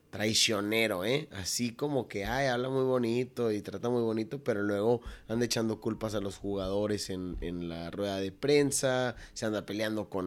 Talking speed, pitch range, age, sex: 180 wpm, 100-125 Hz, 30-49, male